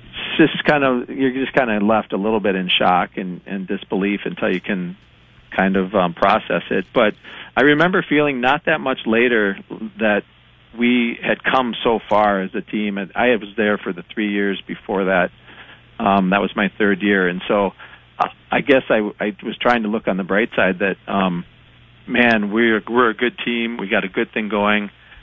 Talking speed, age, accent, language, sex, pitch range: 200 wpm, 40-59, American, English, male, 95-110 Hz